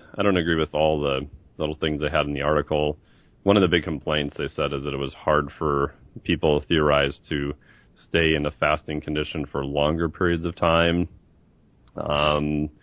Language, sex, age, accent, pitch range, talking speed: English, male, 30-49, American, 70-85 Hz, 185 wpm